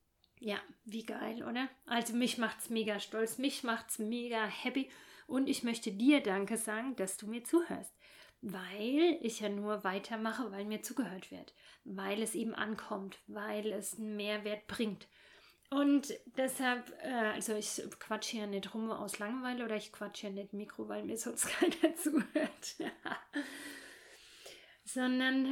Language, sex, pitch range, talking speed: German, female, 205-250 Hz, 155 wpm